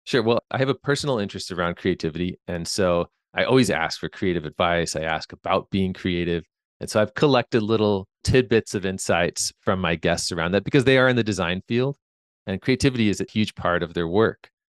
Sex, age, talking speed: male, 30-49, 210 wpm